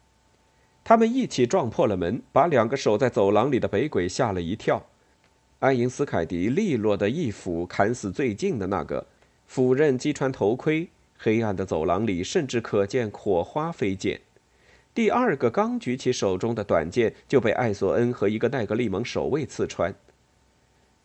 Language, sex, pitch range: Chinese, male, 100-130 Hz